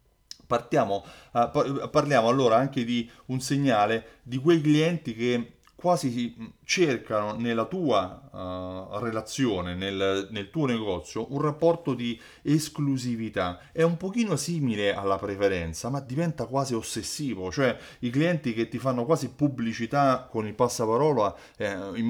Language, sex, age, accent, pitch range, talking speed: Italian, male, 30-49, native, 105-145 Hz, 130 wpm